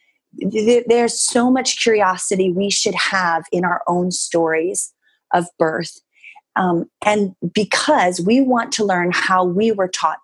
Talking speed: 140 wpm